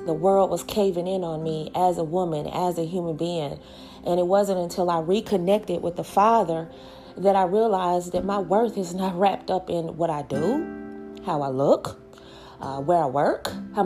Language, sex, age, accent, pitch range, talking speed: English, female, 30-49, American, 165-210 Hz, 195 wpm